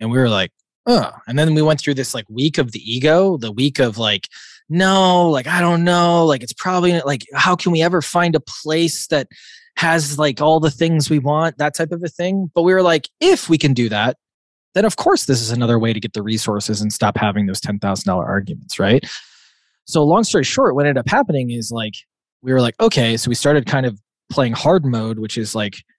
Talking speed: 235 wpm